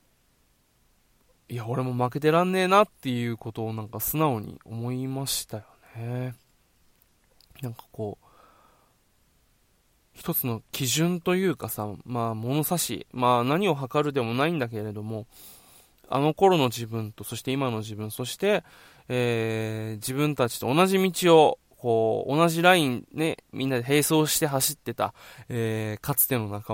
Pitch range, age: 115-165 Hz, 20-39